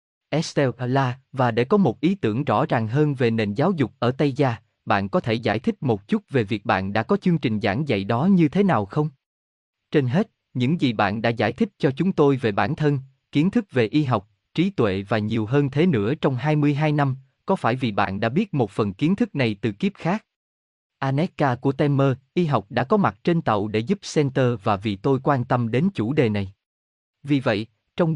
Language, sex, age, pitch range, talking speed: Vietnamese, male, 20-39, 110-155 Hz, 225 wpm